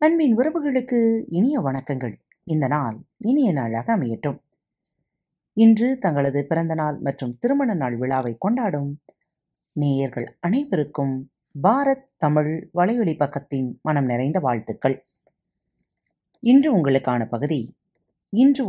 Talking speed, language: 95 wpm, Tamil